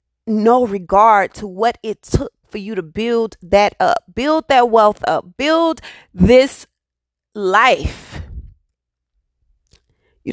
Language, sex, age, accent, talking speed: English, female, 30-49, American, 115 wpm